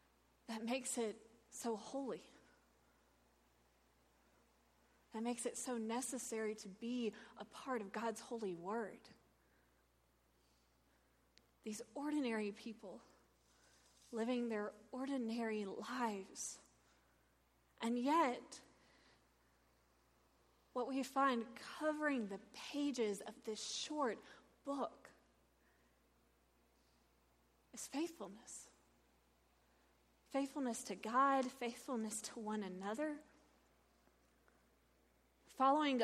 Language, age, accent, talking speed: English, 30-49, American, 80 wpm